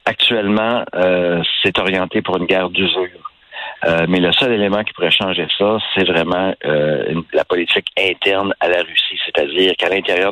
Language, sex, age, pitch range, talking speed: French, male, 60-79, 90-105 Hz, 165 wpm